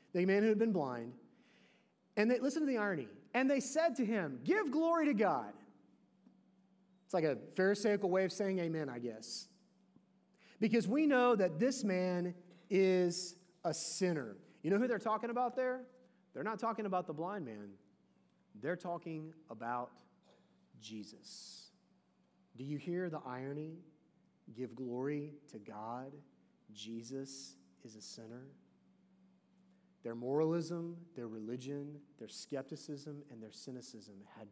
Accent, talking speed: American, 140 wpm